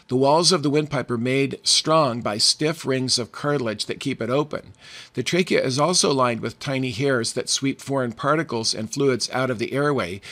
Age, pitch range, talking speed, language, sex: 50-69, 125-145 Hz, 205 wpm, English, male